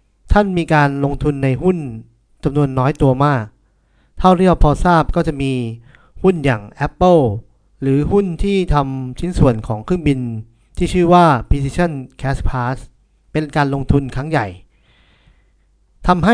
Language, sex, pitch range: Thai, male, 125-170 Hz